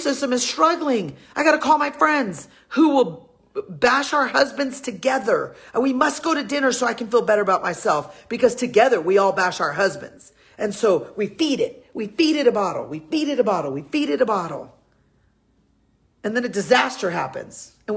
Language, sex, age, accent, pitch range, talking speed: English, female, 40-59, American, 165-255 Hz, 205 wpm